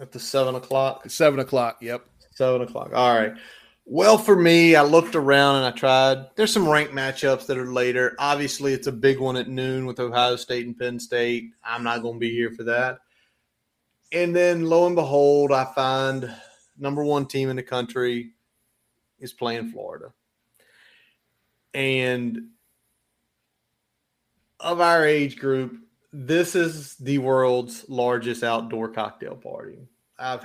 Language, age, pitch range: English, 30-49, 120-145 Hz